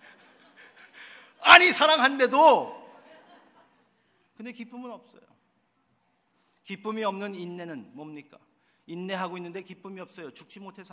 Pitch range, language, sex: 160-210 Hz, Korean, male